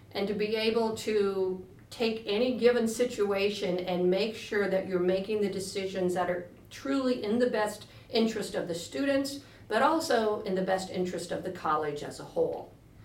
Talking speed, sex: 180 wpm, female